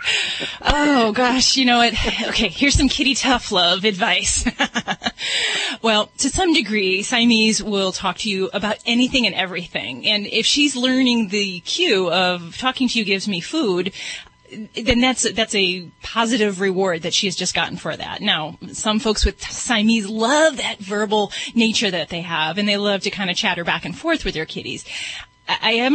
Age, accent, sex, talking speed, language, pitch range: 30-49, American, female, 180 wpm, English, 185-235 Hz